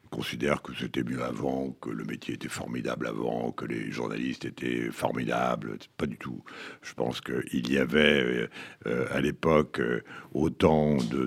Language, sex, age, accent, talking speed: French, male, 70-89, French, 165 wpm